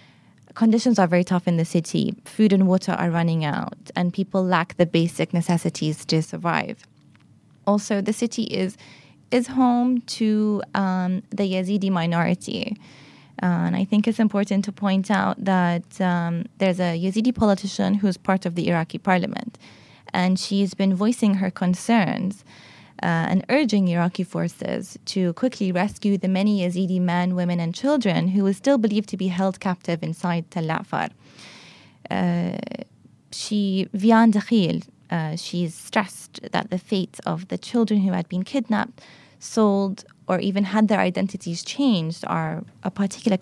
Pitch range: 180-215 Hz